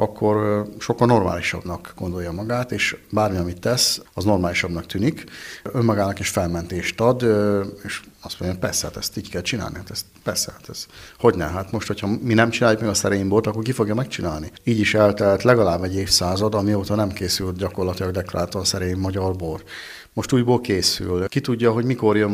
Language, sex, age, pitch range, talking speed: Hungarian, male, 50-69, 90-115 Hz, 175 wpm